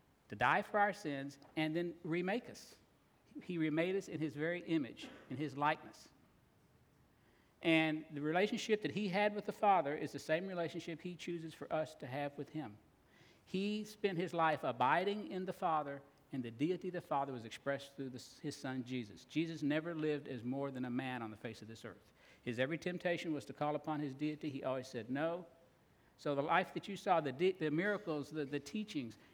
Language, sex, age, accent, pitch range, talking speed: English, male, 60-79, American, 140-170 Hz, 205 wpm